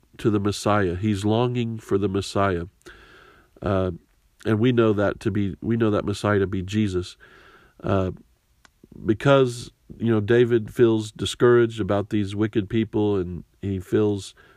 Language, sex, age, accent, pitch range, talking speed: English, male, 50-69, American, 95-115 Hz, 150 wpm